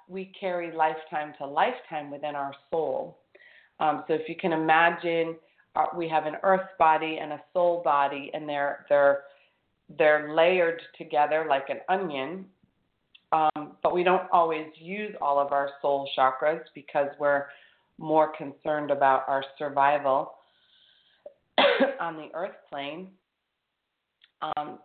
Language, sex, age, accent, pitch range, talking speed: English, female, 40-59, American, 145-175 Hz, 135 wpm